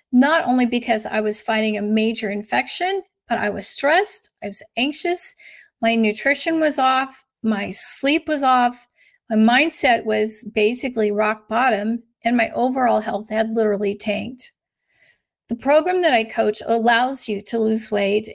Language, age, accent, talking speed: English, 40-59, American, 155 wpm